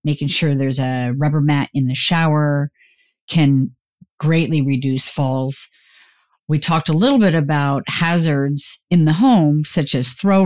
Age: 50-69